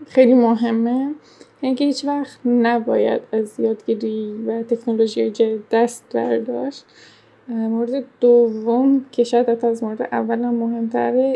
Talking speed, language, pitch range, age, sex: 105 wpm, Persian, 225-245 Hz, 10-29, female